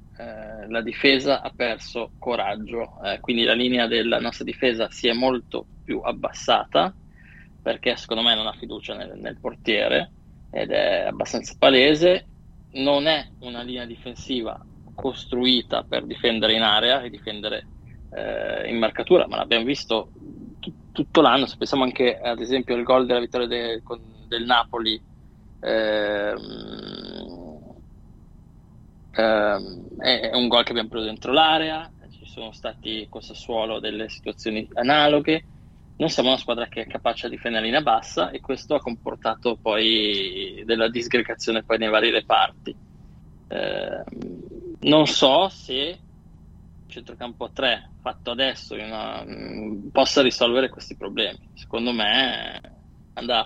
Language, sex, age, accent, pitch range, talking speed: Italian, male, 20-39, native, 110-130 Hz, 125 wpm